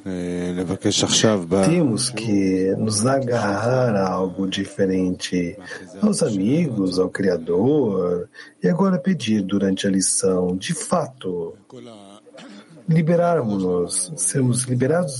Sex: male